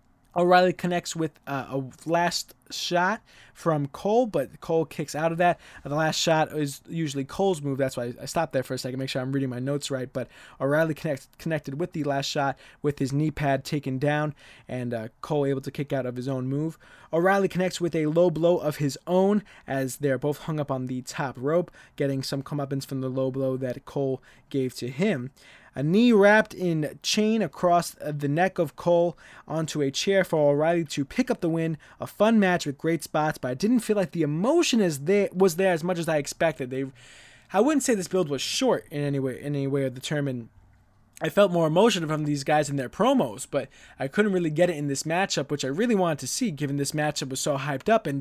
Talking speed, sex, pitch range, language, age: 225 wpm, male, 140-180 Hz, English, 20-39